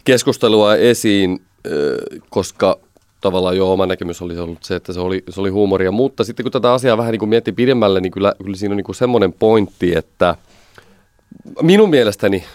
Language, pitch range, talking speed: Finnish, 100-125 Hz, 170 wpm